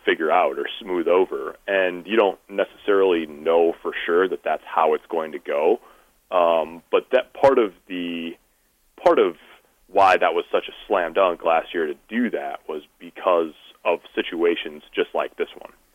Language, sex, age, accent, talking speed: English, male, 30-49, American, 175 wpm